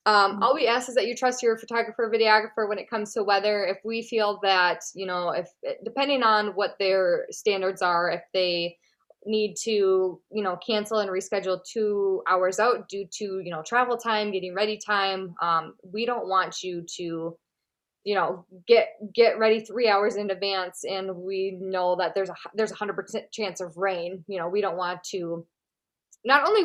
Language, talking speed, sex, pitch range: English, 195 wpm, female, 185-225 Hz